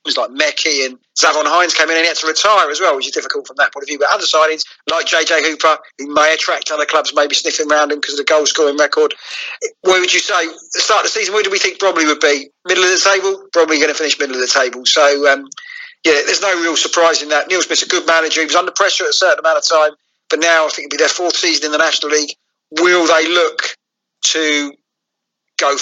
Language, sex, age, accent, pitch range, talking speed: English, male, 40-59, British, 155-220 Hz, 265 wpm